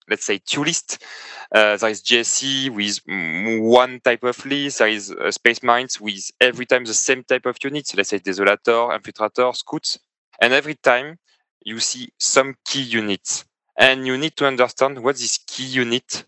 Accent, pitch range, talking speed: French, 110-130 Hz, 180 wpm